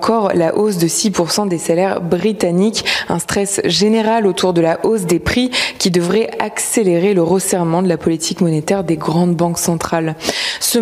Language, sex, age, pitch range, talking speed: French, female, 20-39, 175-210 Hz, 170 wpm